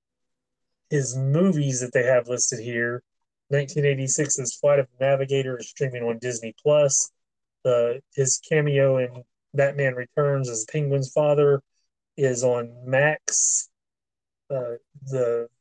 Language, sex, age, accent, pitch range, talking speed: English, male, 30-49, American, 120-140 Hz, 125 wpm